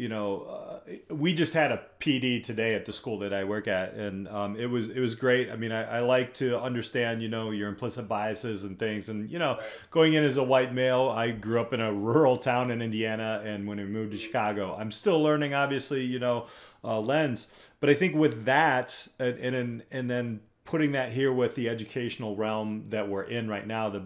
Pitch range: 105-135 Hz